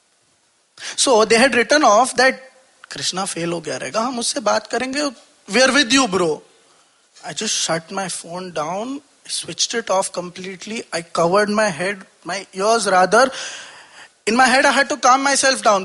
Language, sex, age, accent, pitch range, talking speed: Hindi, male, 20-39, native, 155-240 Hz, 170 wpm